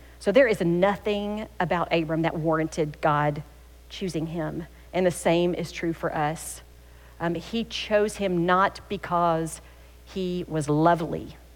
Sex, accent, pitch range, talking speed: female, American, 150-185 Hz, 140 wpm